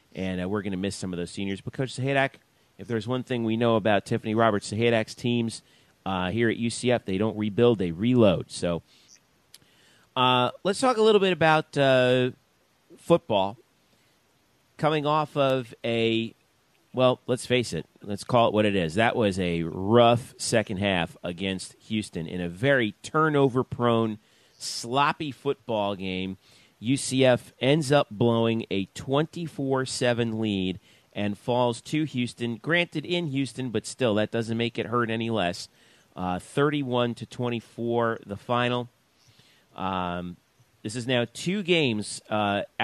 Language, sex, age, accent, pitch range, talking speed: English, male, 40-59, American, 100-130 Hz, 150 wpm